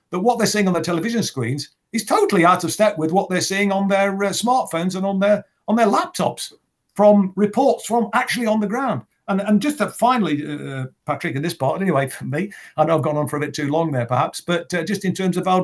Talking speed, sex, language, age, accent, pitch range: 255 wpm, male, English, 50-69, British, 130-180 Hz